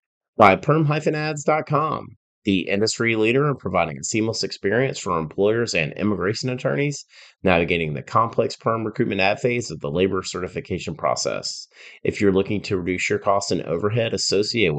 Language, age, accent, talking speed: English, 30-49, American, 150 wpm